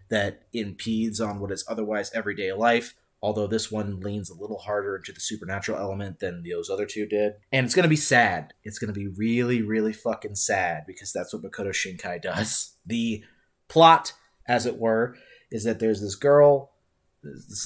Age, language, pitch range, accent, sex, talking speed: 30-49, English, 105-140 Hz, American, male, 185 wpm